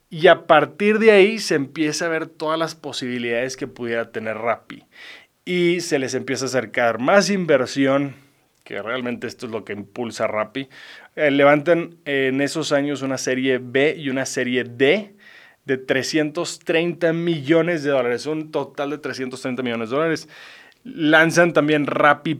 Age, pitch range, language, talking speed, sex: 20-39, 130-165 Hz, English, 165 wpm, male